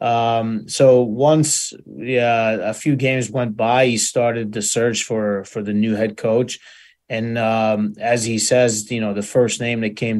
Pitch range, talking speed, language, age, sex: 110-125 Hz, 180 wpm, English, 30-49, male